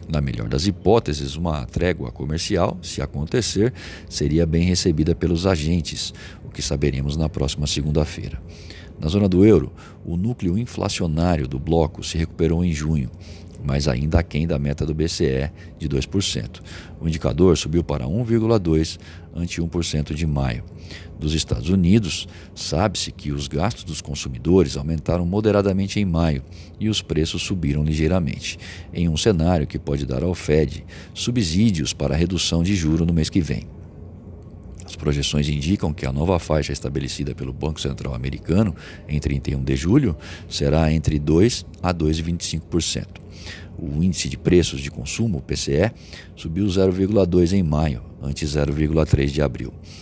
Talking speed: 145 wpm